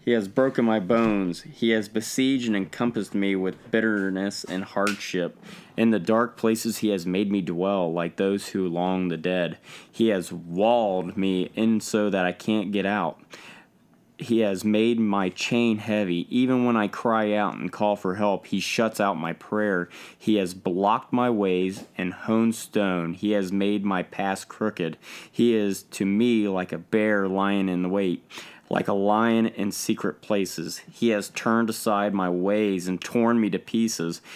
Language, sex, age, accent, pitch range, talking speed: English, male, 20-39, American, 95-115 Hz, 180 wpm